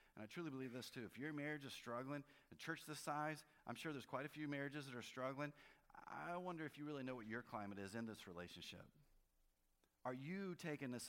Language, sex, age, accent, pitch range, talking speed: English, male, 30-49, American, 95-135 Hz, 225 wpm